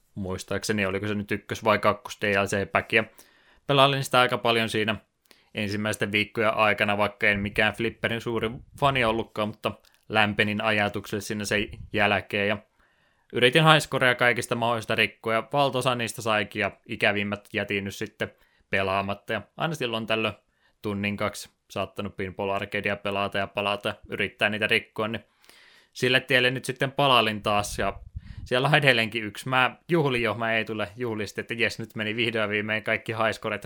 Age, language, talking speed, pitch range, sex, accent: 20-39, Finnish, 155 wpm, 105-120 Hz, male, native